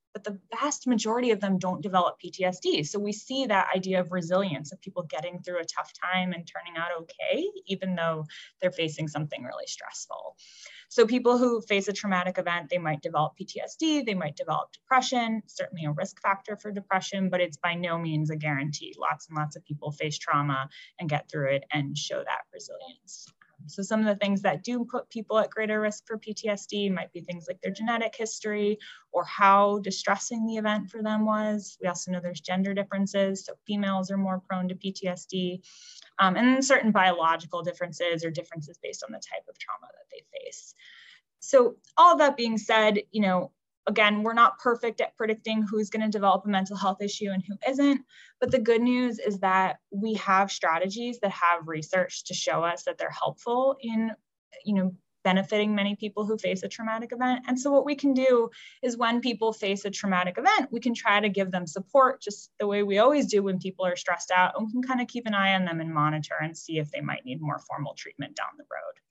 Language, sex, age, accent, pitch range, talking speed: English, female, 20-39, American, 180-230 Hz, 210 wpm